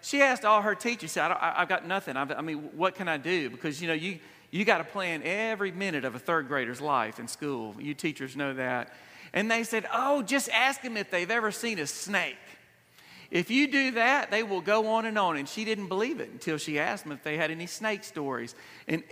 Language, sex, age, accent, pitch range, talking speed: English, male, 40-59, American, 160-225 Hz, 235 wpm